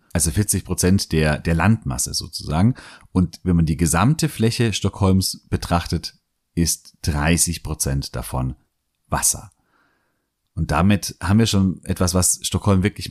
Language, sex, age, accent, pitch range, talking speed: German, male, 40-59, German, 85-105 Hz, 135 wpm